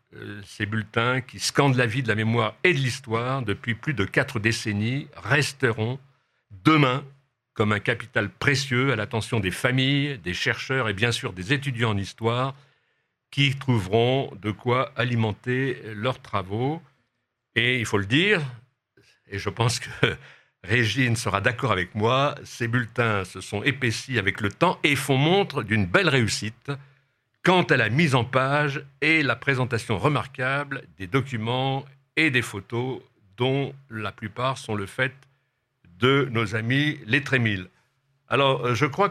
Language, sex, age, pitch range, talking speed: French, male, 60-79, 110-140 Hz, 155 wpm